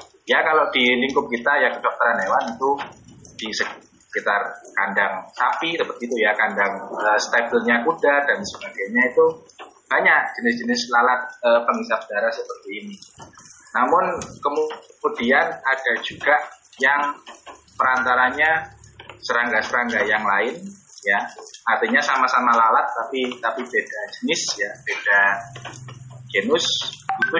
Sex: male